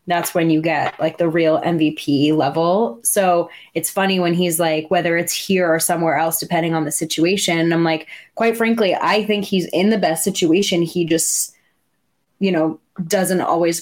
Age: 20-39